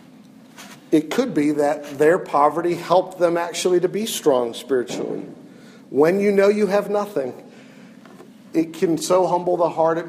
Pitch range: 150-225 Hz